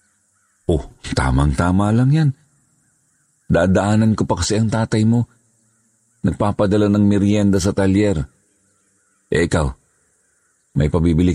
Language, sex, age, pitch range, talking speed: Filipino, male, 50-69, 85-105 Hz, 105 wpm